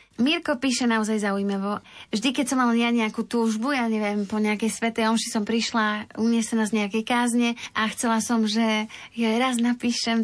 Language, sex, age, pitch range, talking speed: Slovak, female, 20-39, 220-250 Hz, 175 wpm